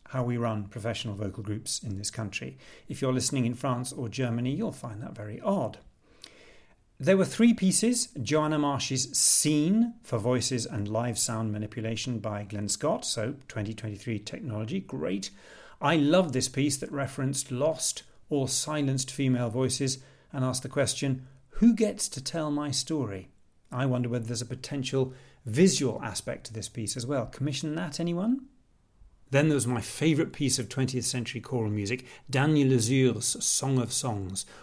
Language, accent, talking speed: English, British, 160 wpm